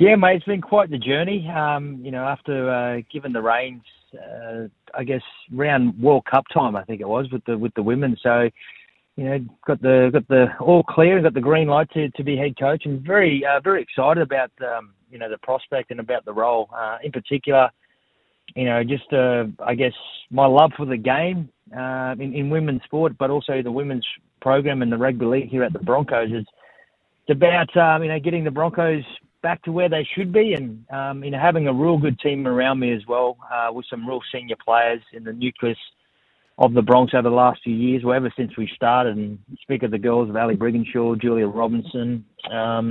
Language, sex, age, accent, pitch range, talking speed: English, male, 30-49, Australian, 120-145 Hz, 220 wpm